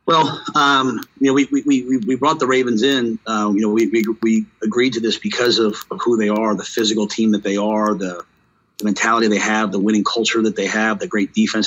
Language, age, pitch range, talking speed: English, 40-59, 105-115 Hz, 240 wpm